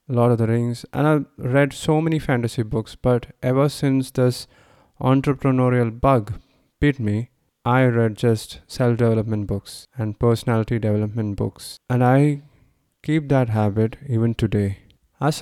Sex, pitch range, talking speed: male, 110-135 Hz, 140 wpm